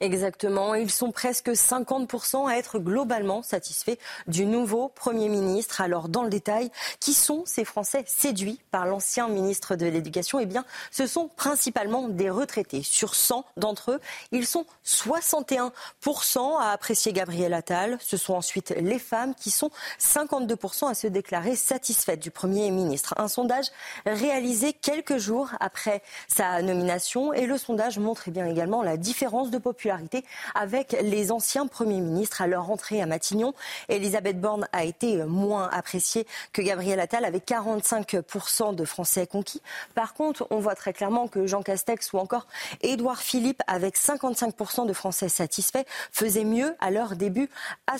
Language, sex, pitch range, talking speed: French, female, 195-255 Hz, 160 wpm